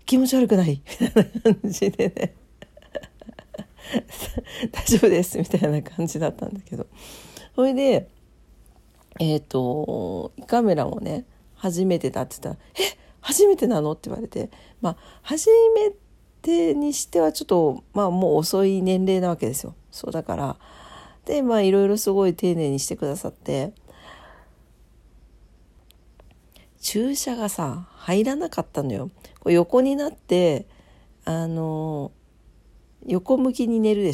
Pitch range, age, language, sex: 170-245 Hz, 40-59, Japanese, female